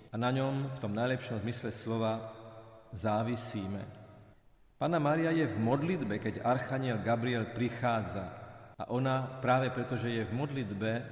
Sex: male